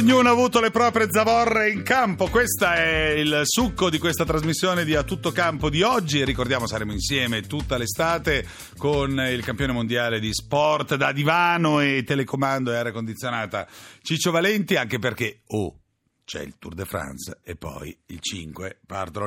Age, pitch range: 40-59, 120-175 Hz